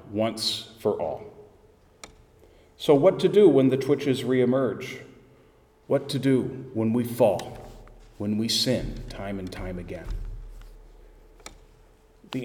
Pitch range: 110-170 Hz